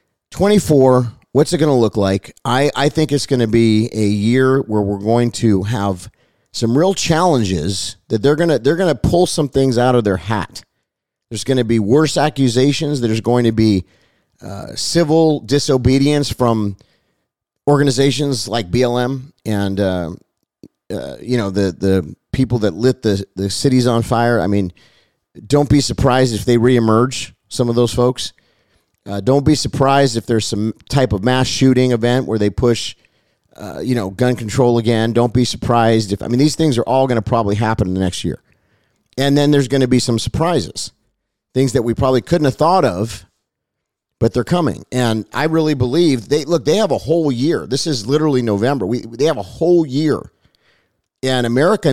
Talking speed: 185 wpm